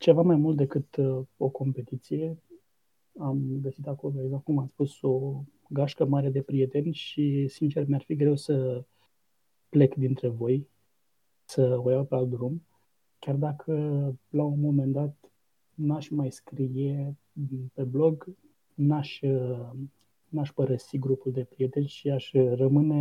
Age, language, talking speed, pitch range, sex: 20-39, Romanian, 140 wpm, 130-150 Hz, male